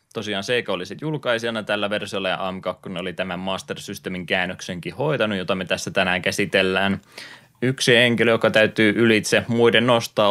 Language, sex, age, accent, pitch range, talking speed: Finnish, male, 20-39, native, 95-110 Hz, 155 wpm